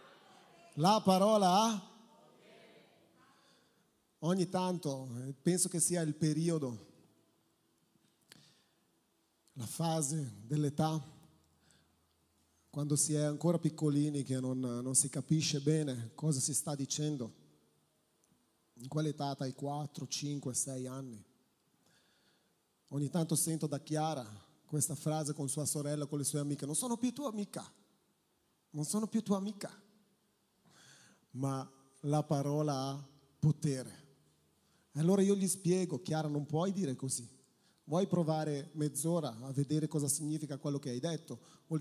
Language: Italian